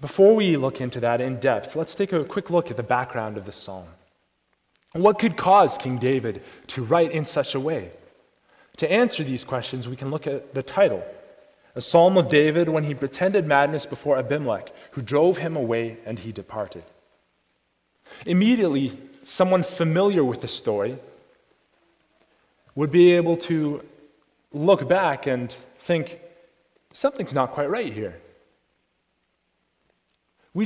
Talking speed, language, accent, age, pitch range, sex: 150 wpm, English, American, 30-49, 130-180 Hz, male